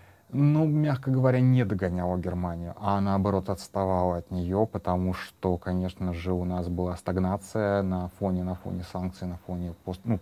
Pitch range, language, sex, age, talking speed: 90-115 Hz, Russian, male, 30-49, 160 wpm